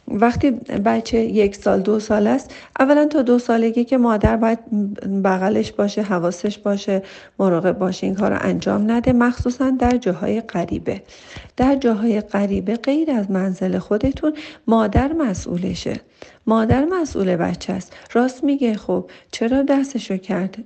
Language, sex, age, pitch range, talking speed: Persian, female, 40-59, 195-245 Hz, 135 wpm